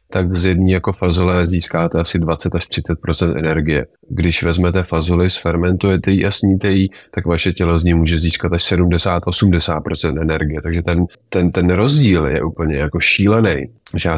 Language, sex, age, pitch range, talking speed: Czech, male, 30-49, 85-95 Hz, 175 wpm